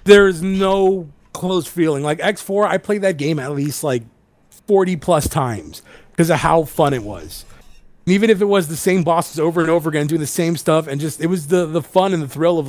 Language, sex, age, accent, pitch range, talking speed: English, male, 30-49, American, 145-185 Hz, 225 wpm